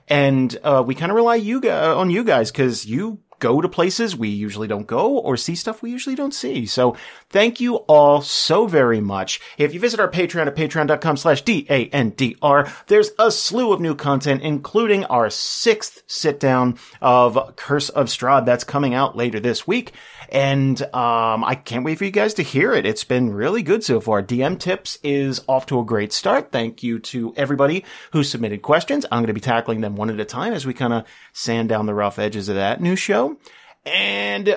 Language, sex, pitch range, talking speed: English, male, 120-190 Hz, 205 wpm